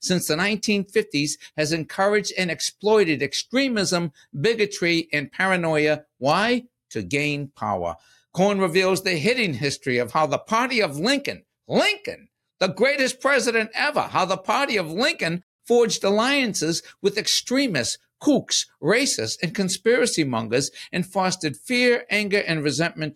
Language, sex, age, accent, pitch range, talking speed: English, male, 60-79, American, 130-185 Hz, 130 wpm